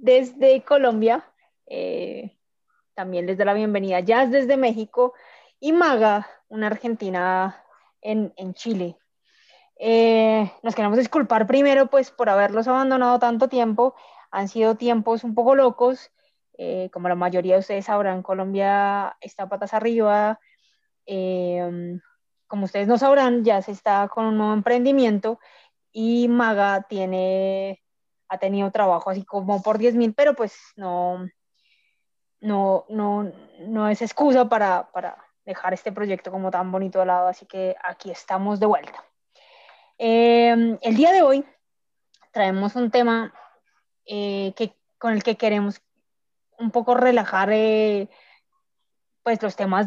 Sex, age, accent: female, 20-39, Colombian